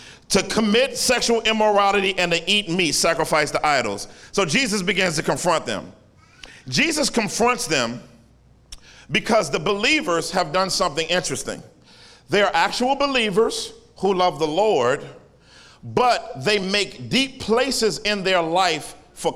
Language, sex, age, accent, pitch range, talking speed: English, male, 50-69, American, 195-240 Hz, 135 wpm